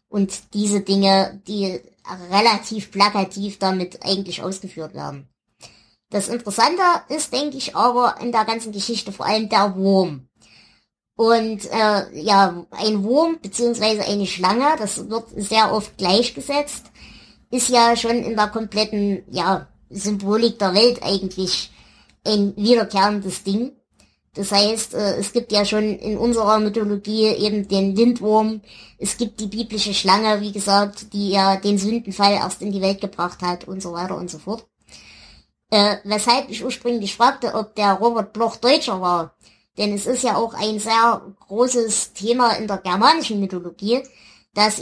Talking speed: 150 wpm